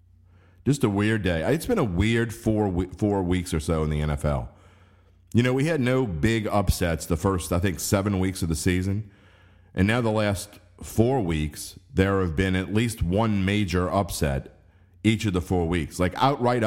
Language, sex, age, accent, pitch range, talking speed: English, male, 40-59, American, 85-105 Hz, 195 wpm